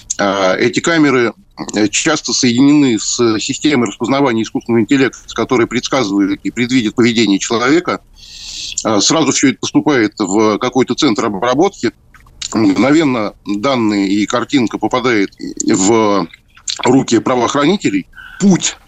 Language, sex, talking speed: Russian, male, 100 wpm